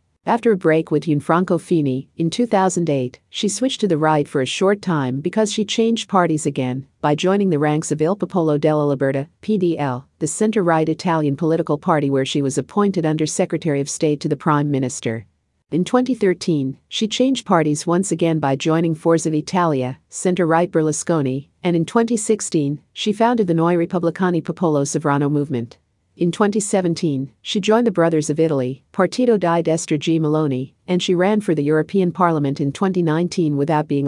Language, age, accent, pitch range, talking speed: English, 50-69, American, 145-185 Hz, 170 wpm